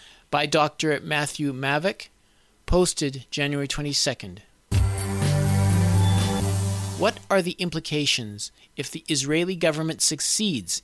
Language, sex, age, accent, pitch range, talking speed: English, male, 40-59, American, 135-180 Hz, 90 wpm